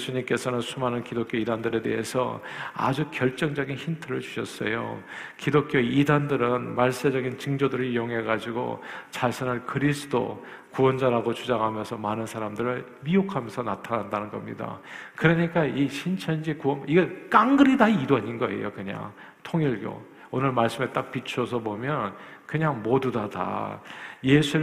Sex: male